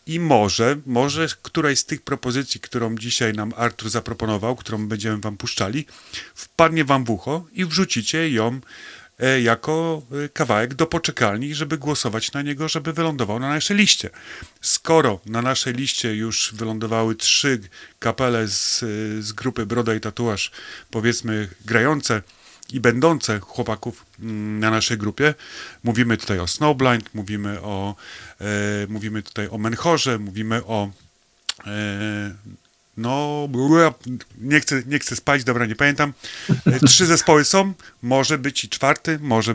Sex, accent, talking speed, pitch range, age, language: male, native, 135 wpm, 110-140 Hz, 30-49, Polish